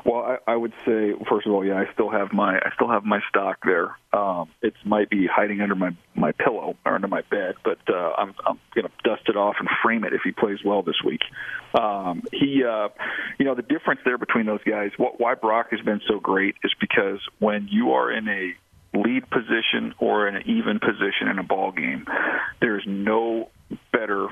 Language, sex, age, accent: English, male, 40-59, American